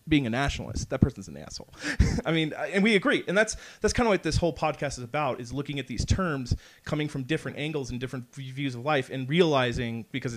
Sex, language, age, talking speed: male, English, 40-59, 230 wpm